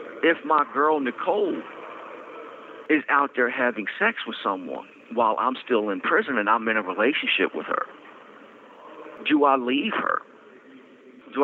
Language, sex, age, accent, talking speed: English, male, 50-69, American, 145 wpm